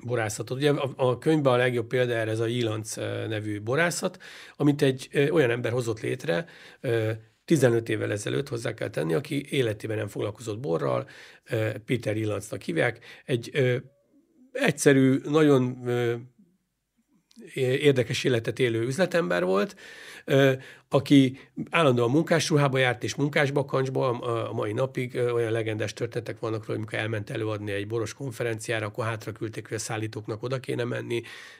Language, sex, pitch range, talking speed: Hungarian, male, 110-135 Hz, 150 wpm